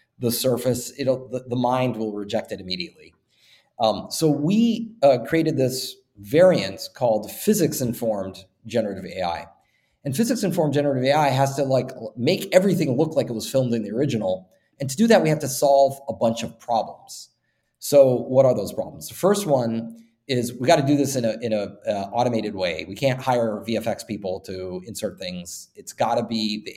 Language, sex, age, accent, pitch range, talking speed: English, male, 30-49, American, 110-145 Hz, 190 wpm